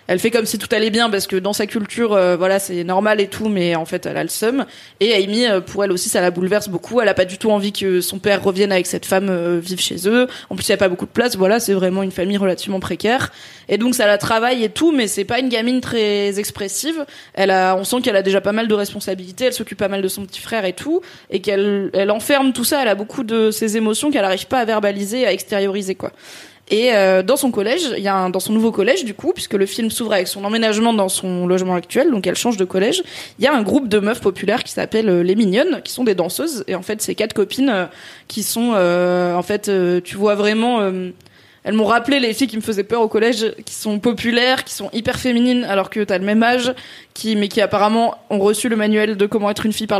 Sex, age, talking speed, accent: female, 20-39, 270 wpm, French